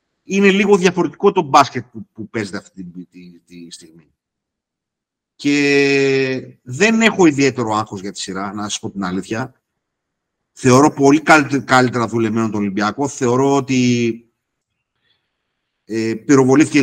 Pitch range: 110-160 Hz